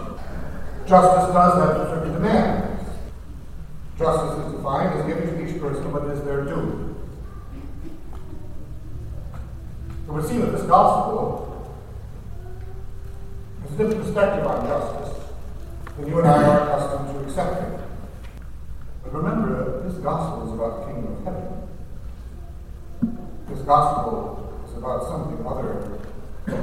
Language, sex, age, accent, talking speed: English, male, 60-79, American, 125 wpm